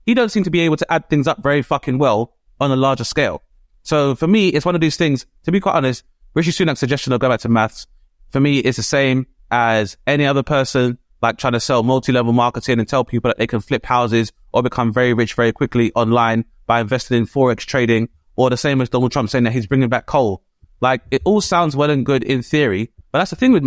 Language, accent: English, British